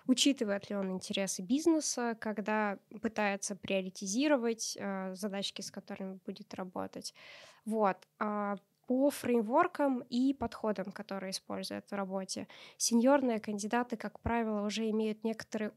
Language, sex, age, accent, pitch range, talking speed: Russian, female, 20-39, native, 205-255 Hz, 110 wpm